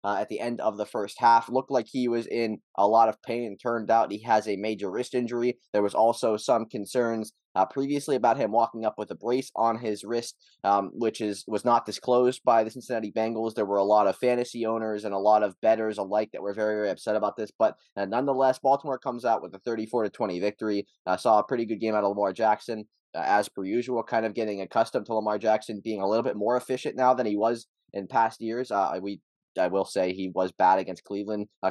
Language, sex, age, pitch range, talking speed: English, male, 20-39, 105-130 Hz, 250 wpm